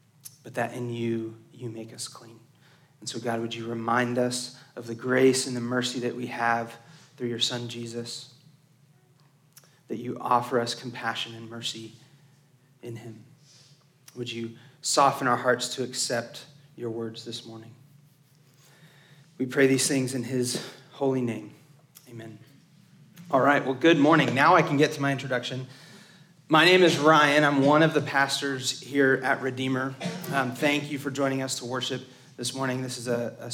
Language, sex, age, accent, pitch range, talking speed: English, male, 30-49, American, 120-145 Hz, 170 wpm